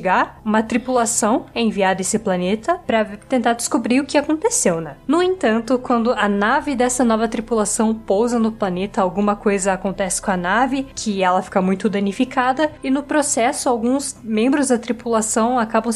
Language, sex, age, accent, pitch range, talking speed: Portuguese, female, 10-29, Brazilian, 195-250 Hz, 165 wpm